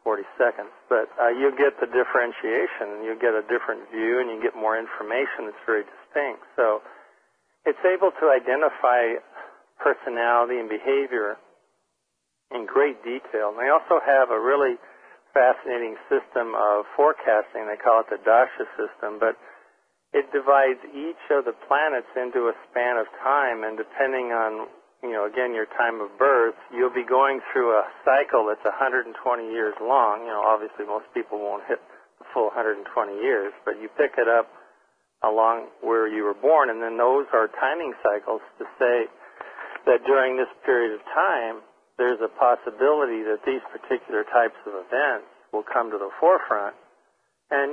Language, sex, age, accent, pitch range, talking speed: English, male, 50-69, American, 110-140 Hz, 165 wpm